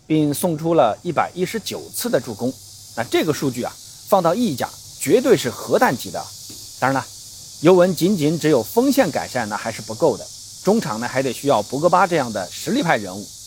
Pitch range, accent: 105-180 Hz, native